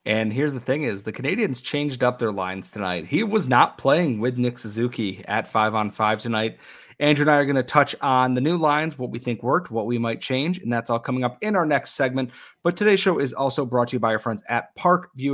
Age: 30-49